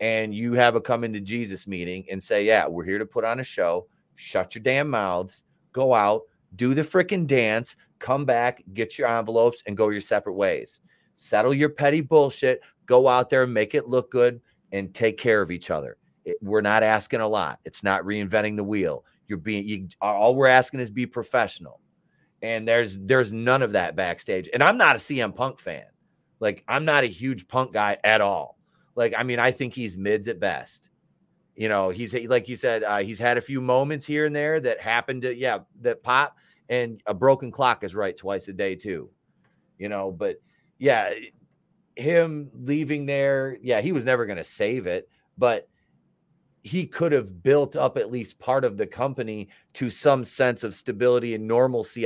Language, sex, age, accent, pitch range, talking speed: English, male, 30-49, American, 110-135 Hz, 200 wpm